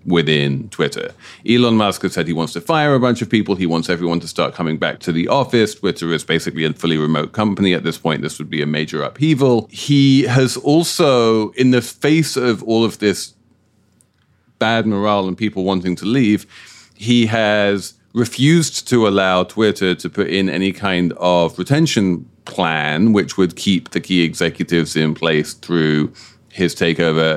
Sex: male